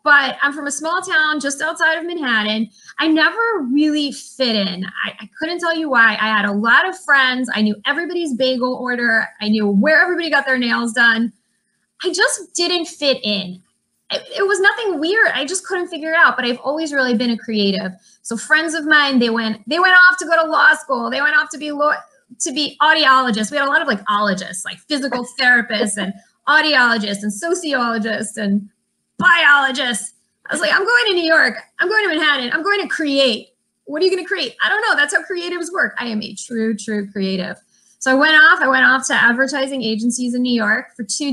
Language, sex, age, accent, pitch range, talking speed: English, female, 20-39, American, 220-310 Hz, 220 wpm